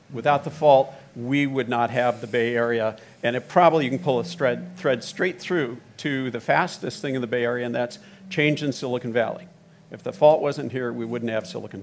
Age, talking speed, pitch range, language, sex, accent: 50-69, 225 wpm, 120-165 Hz, English, male, American